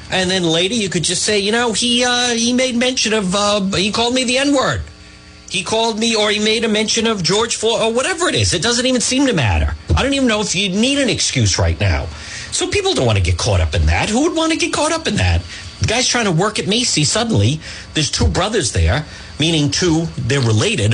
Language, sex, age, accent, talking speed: English, male, 50-69, American, 250 wpm